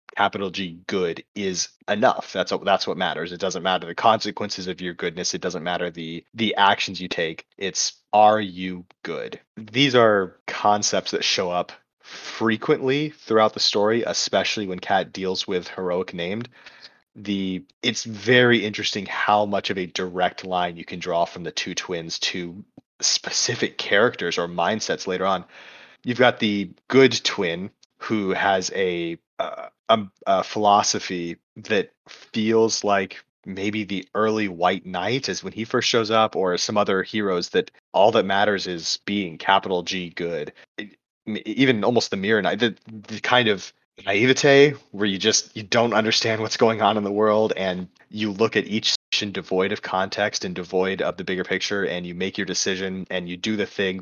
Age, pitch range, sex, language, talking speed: 30-49, 90-110 Hz, male, English, 170 wpm